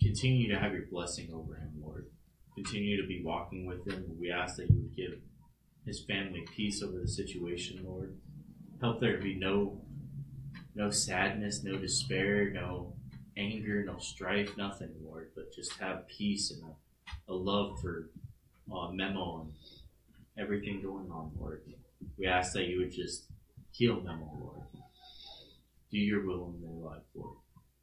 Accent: American